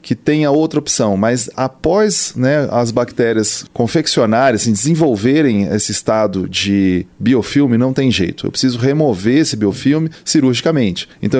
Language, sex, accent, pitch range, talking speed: Portuguese, male, Brazilian, 110-145 Hz, 140 wpm